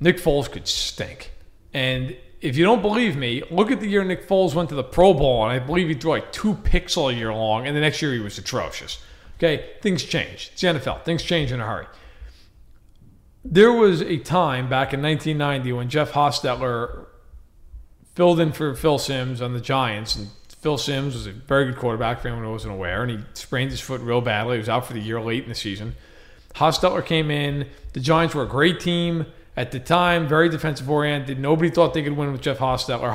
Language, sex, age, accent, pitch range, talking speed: English, male, 40-59, American, 115-165 Hz, 215 wpm